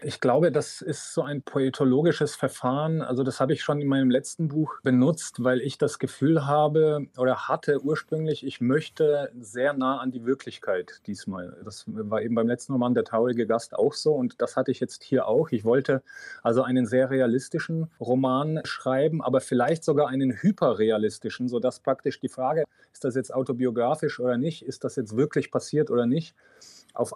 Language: German